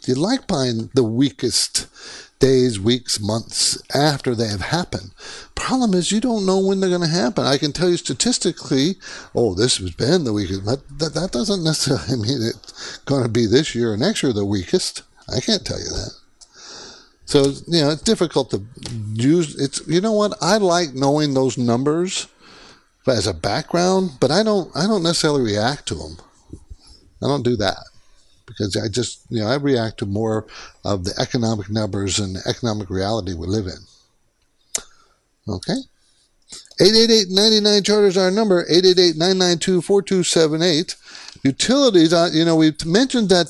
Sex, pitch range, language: male, 120-175 Hz, English